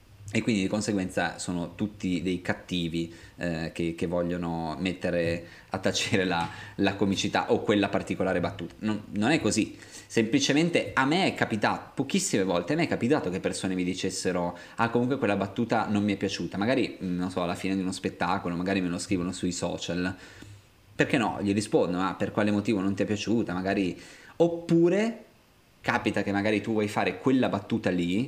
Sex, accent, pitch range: male, native, 95-110 Hz